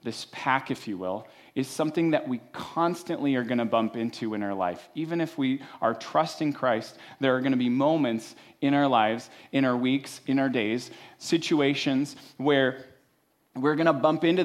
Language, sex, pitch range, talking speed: English, male, 115-140 Hz, 190 wpm